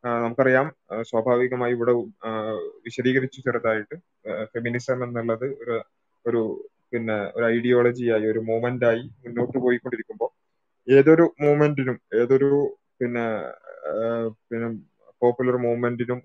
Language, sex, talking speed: Malayalam, male, 90 wpm